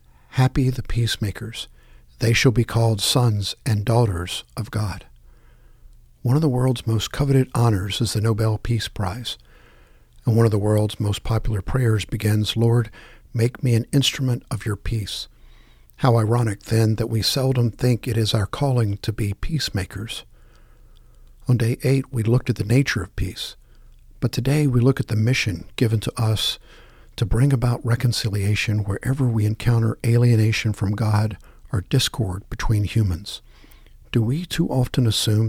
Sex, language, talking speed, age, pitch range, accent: male, English, 160 wpm, 50-69, 105-125 Hz, American